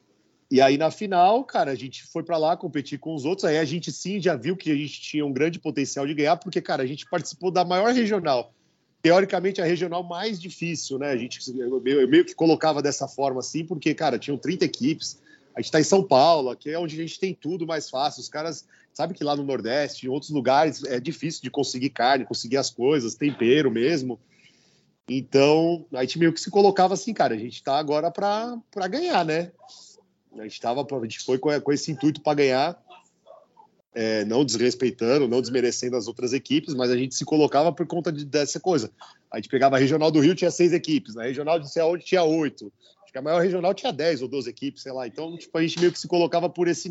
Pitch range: 130-170 Hz